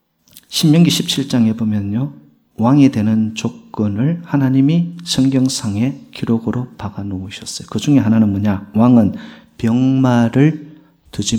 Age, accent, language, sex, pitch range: 40-59, native, Korean, male, 105-135 Hz